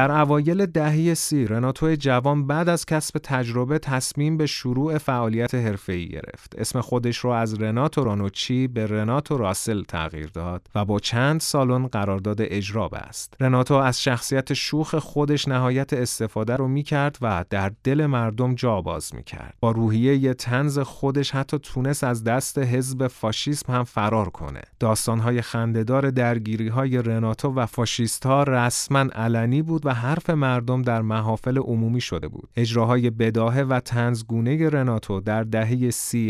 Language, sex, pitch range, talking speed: Persian, male, 110-135 Hz, 150 wpm